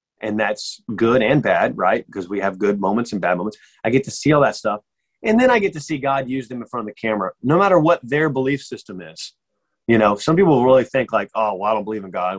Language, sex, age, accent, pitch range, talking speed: English, male, 30-49, American, 105-145 Hz, 270 wpm